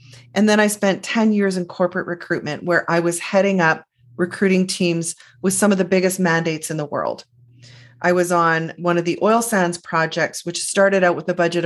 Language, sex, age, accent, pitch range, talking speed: English, female, 30-49, American, 160-195 Hz, 205 wpm